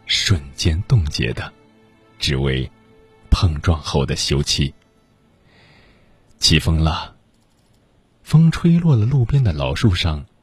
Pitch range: 75-125 Hz